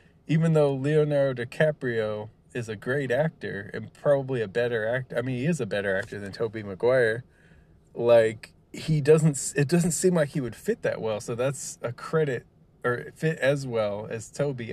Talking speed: 185 wpm